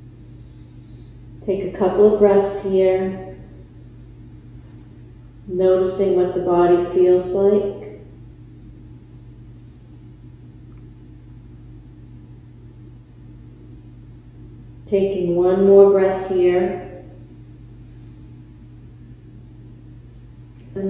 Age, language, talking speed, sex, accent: 40-59, English, 50 wpm, female, American